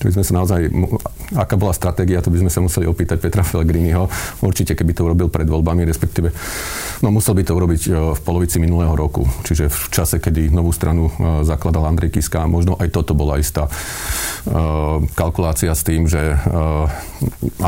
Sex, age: male, 40-59